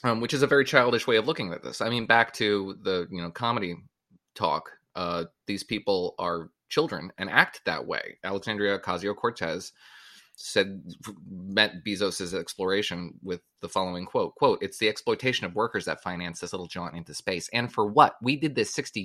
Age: 20-39